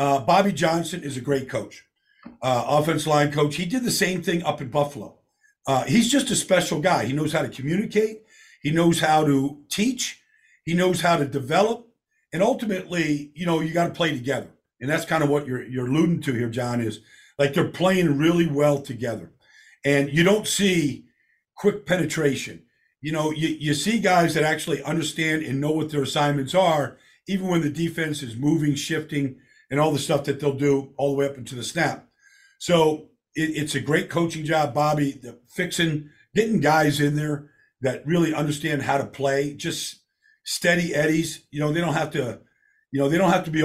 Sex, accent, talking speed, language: male, American, 200 wpm, English